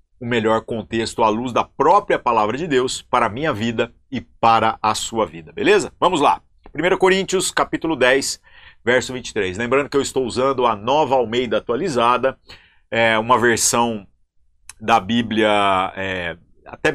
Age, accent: 50-69, Brazilian